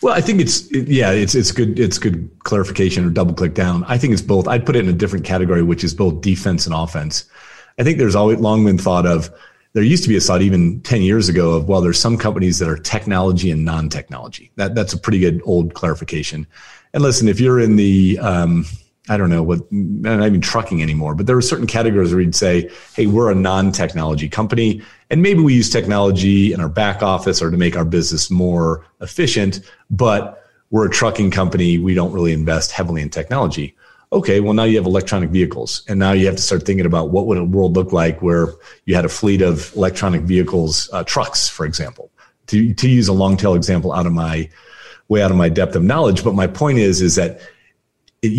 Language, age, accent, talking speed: English, 30-49, American, 225 wpm